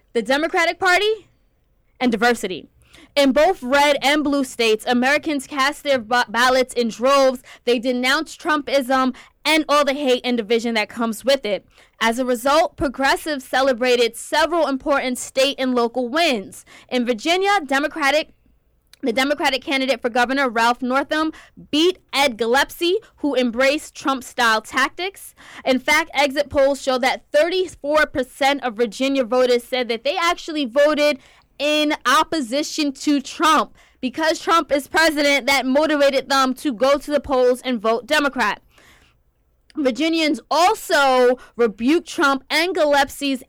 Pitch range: 250-300 Hz